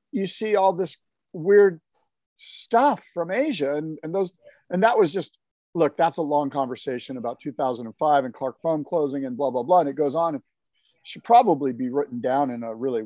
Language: English